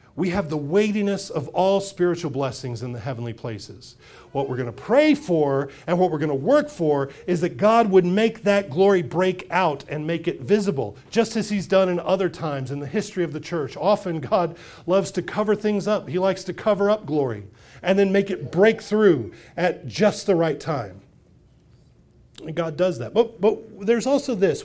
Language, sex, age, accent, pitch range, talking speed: English, male, 40-59, American, 135-200 Hz, 205 wpm